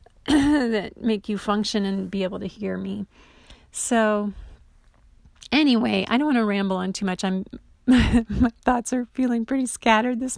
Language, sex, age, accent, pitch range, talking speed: English, female, 30-49, American, 205-260 Hz, 160 wpm